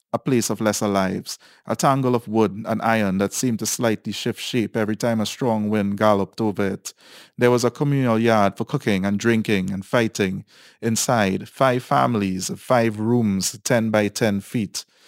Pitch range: 100-120 Hz